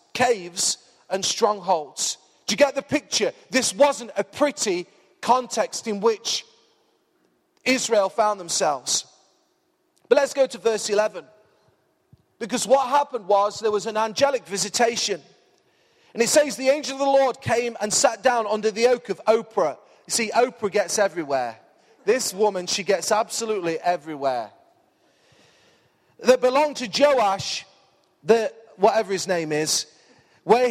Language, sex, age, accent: English, male, 30-49, British